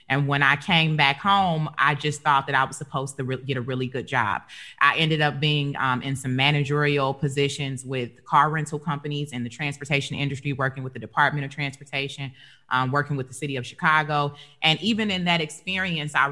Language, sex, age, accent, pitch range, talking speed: English, female, 30-49, American, 130-155 Hz, 200 wpm